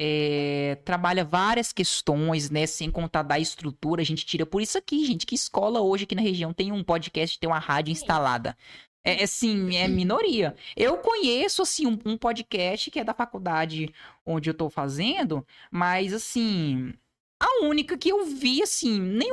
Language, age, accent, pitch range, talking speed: Portuguese, 10-29, Brazilian, 160-230 Hz, 170 wpm